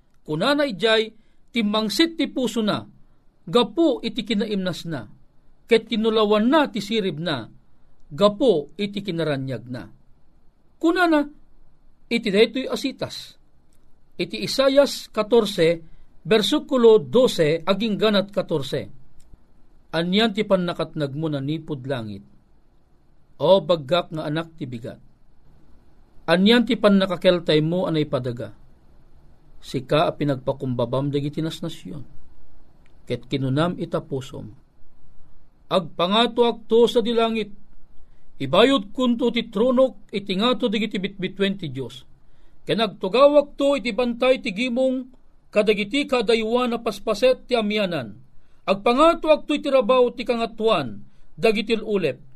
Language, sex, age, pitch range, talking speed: Filipino, male, 50-69, 155-235 Hz, 105 wpm